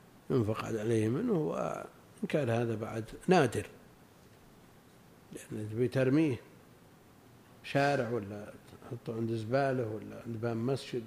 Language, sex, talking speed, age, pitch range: Arabic, male, 105 wpm, 50-69, 115-145 Hz